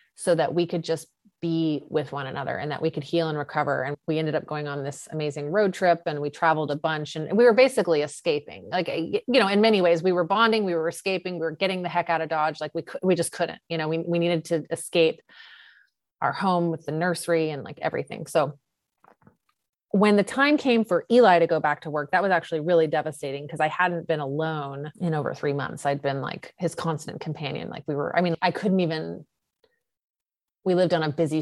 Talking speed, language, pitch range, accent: 230 wpm, English, 150-175 Hz, American